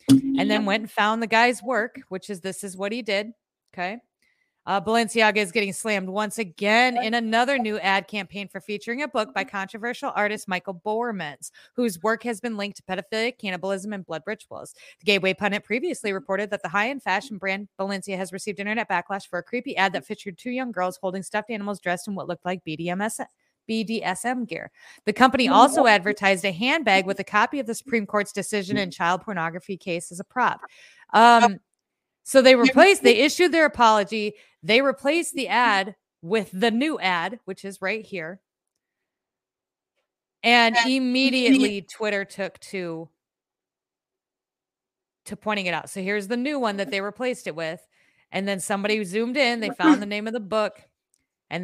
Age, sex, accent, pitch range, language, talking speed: 30-49, female, American, 195-235 Hz, English, 180 wpm